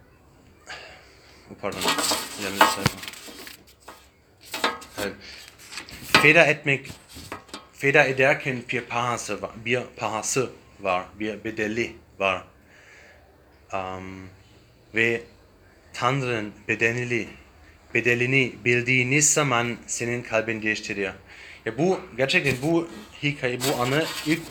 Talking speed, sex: 85 wpm, male